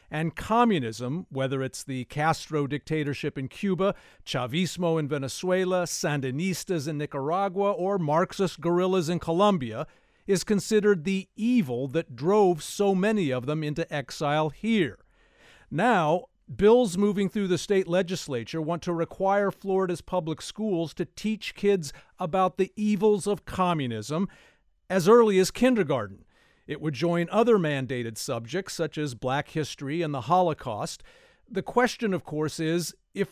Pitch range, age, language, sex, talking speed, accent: 150-205 Hz, 50-69, English, male, 140 wpm, American